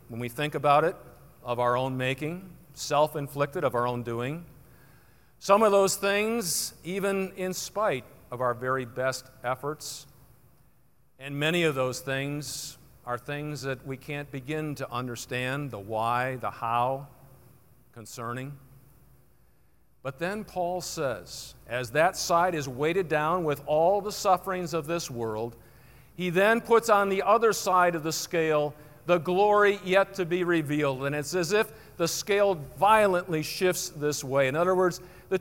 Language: English